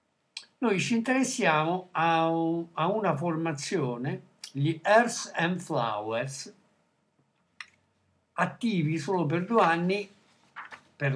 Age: 60-79